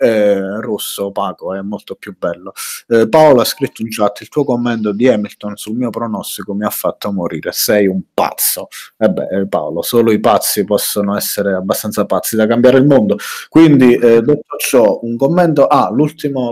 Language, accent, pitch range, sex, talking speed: Italian, native, 100-120 Hz, male, 180 wpm